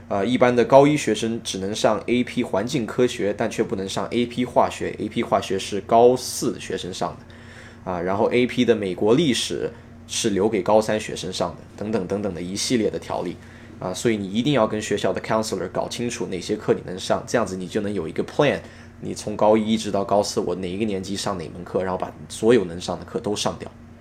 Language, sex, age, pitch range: Chinese, male, 20-39, 100-120 Hz